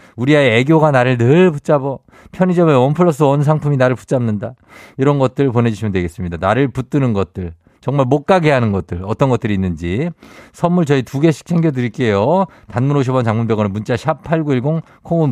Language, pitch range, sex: Korean, 110-160 Hz, male